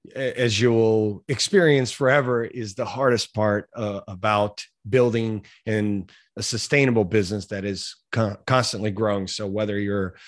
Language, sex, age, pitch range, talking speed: English, male, 30-49, 105-130 Hz, 140 wpm